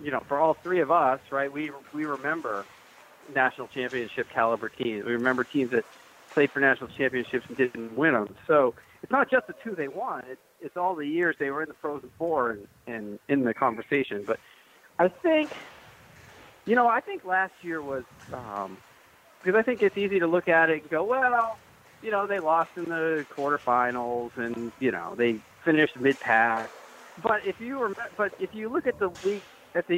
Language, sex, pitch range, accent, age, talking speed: English, male, 130-195 Hz, American, 40-59, 200 wpm